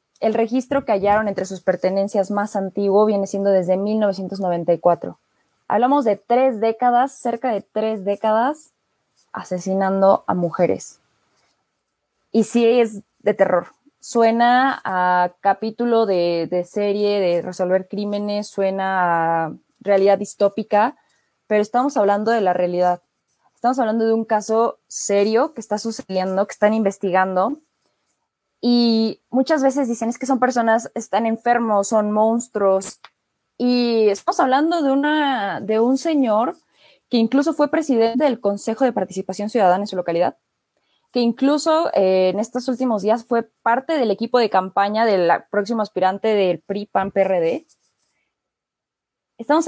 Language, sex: Spanish, female